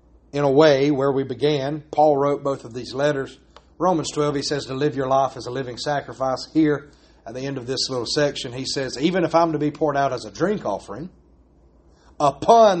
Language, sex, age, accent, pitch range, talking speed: English, male, 30-49, American, 145-195 Hz, 215 wpm